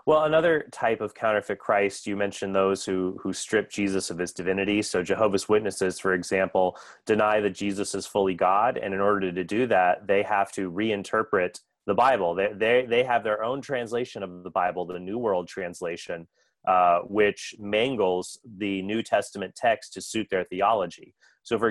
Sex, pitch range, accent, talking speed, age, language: male, 95-105 Hz, American, 180 wpm, 30-49, English